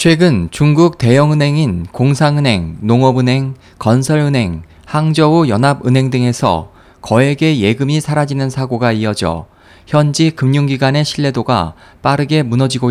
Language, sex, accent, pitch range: Korean, male, native, 95-150 Hz